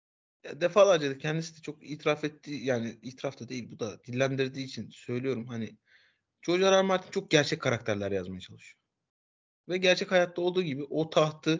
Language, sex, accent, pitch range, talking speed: Turkish, male, native, 115-150 Hz, 170 wpm